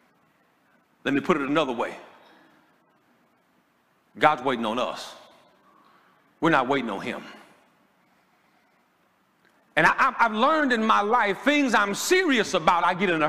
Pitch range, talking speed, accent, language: 145-180 Hz, 130 wpm, American, English